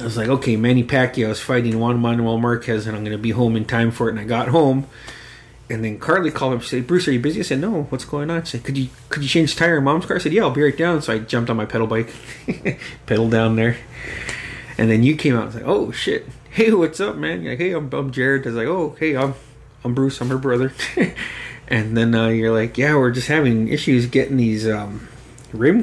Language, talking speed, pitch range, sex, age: English, 270 wpm, 115-140 Hz, male, 30-49